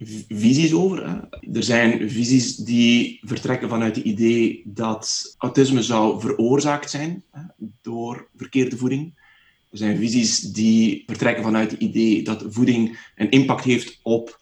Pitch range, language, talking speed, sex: 115-150 Hz, Dutch, 145 wpm, male